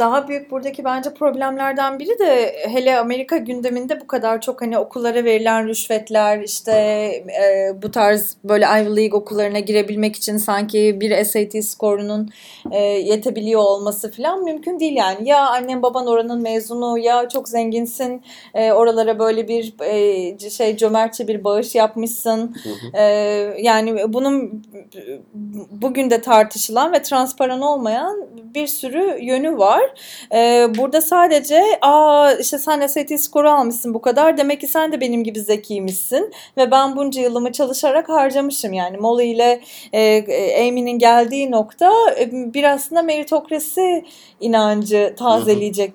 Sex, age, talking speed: female, 30-49, 135 wpm